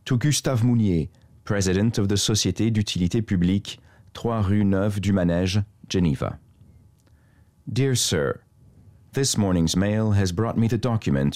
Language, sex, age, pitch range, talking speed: English, male, 40-59, 90-110 Hz, 130 wpm